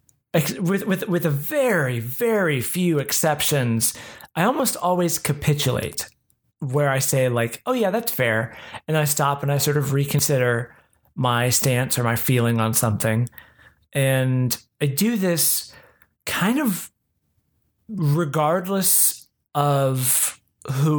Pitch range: 130-175 Hz